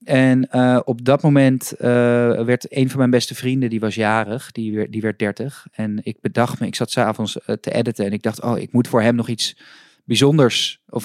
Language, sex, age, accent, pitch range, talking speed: Dutch, male, 20-39, Dutch, 115-130 Hz, 215 wpm